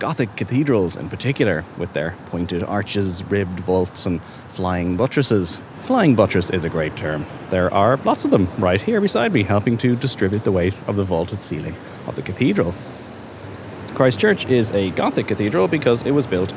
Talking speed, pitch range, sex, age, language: 180 wpm, 95-135 Hz, male, 30-49, English